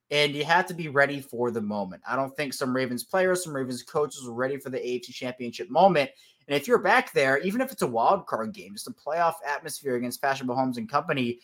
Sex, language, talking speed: male, English, 240 wpm